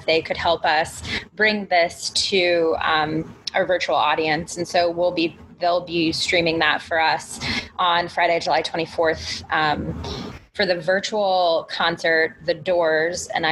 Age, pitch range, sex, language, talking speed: 20-39, 160-190 Hz, female, English, 145 wpm